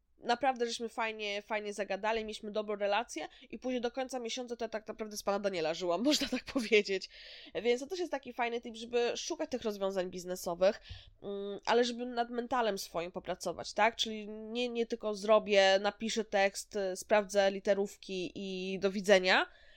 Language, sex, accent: Polish, female, native